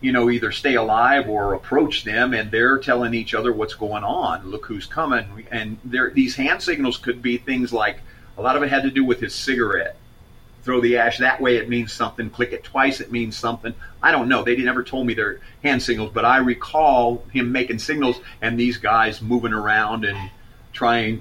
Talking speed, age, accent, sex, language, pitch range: 210 wpm, 40-59, American, male, English, 110-125 Hz